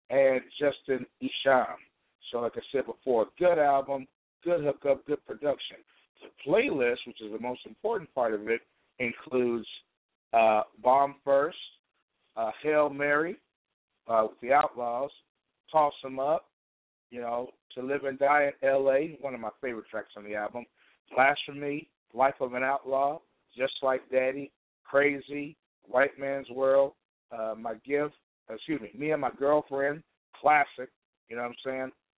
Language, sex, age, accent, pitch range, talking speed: English, male, 50-69, American, 120-140 Hz, 150 wpm